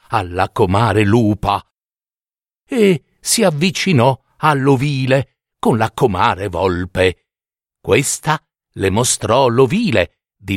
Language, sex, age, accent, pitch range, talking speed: Italian, male, 50-69, native, 110-165 Hz, 90 wpm